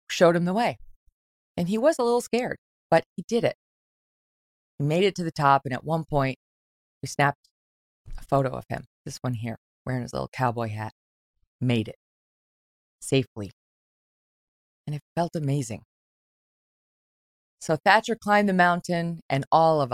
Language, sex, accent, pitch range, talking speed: English, female, American, 130-175 Hz, 160 wpm